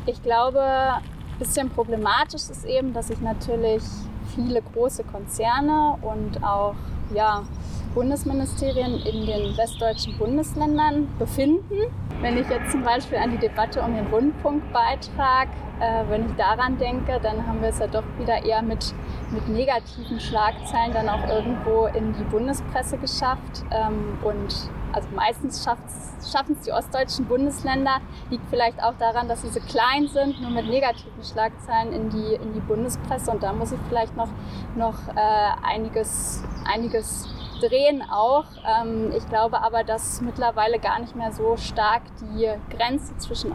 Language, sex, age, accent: German, female, 10-29, German